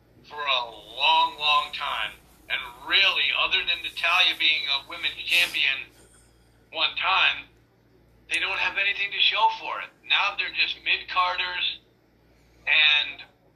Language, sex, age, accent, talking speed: English, male, 50-69, American, 130 wpm